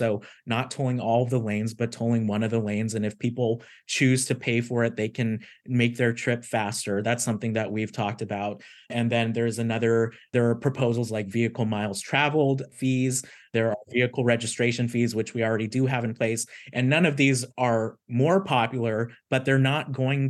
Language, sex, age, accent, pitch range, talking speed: English, male, 30-49, American, 115-125 Hz, 200 wpm